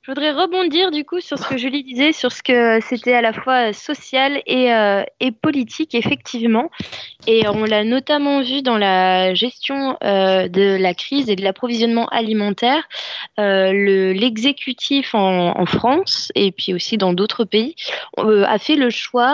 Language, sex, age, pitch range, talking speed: French, female, 20-39, 190-245 Hz, 175 wpm